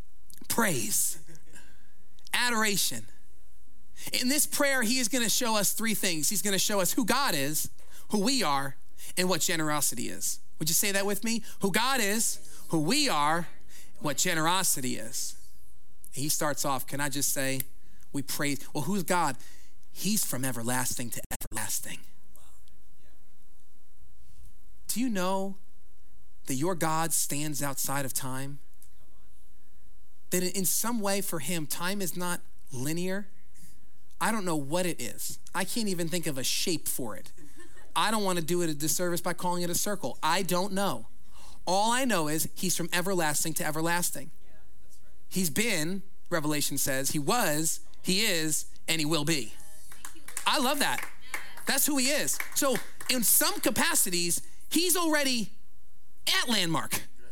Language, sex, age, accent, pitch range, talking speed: English, male, 30-49, American, 130-200 Hz, 155 wpm